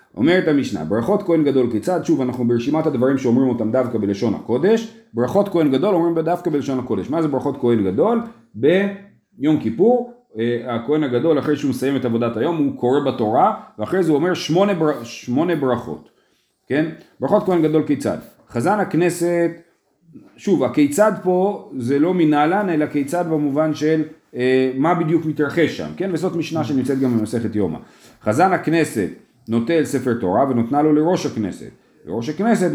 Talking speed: 155 wpm